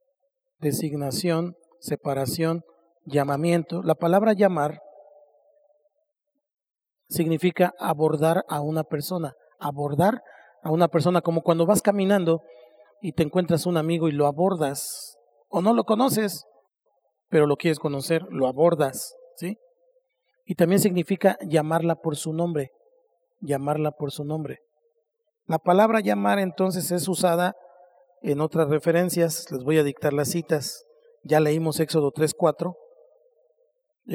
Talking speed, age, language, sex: 120 wpm, 40-59, Spanish, male